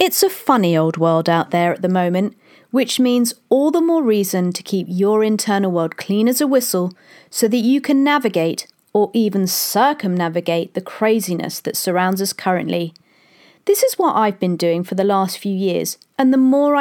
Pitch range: 180-255 Hz